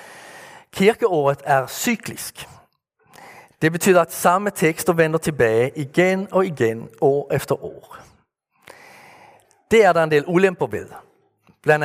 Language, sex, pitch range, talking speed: Danish, male, 135-175 Hz, 120 wpm